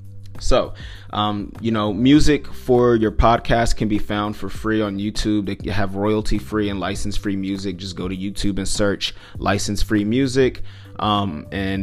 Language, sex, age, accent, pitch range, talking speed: English, male, 30-49, American, 95-115 Hz, 170 wpm